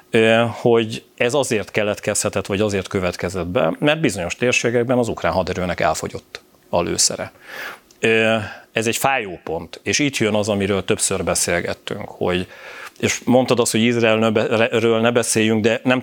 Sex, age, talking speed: male, 40-59, 140 wpm